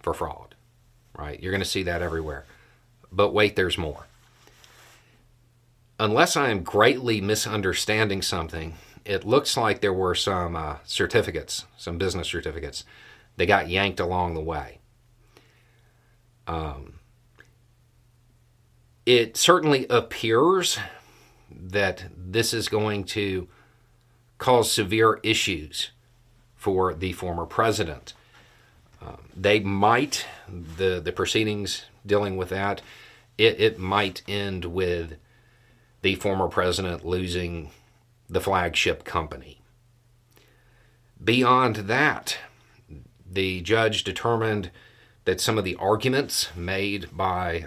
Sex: male